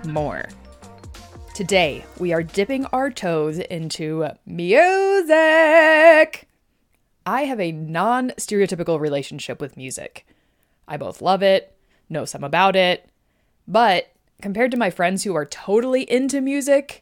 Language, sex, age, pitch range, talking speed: English, female, 20-39, 155-225 Hz, 120 wpm